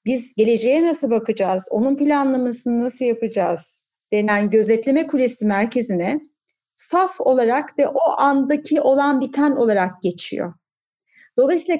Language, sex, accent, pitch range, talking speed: Turkish, female, native, 235-305 Hz, 110 wpm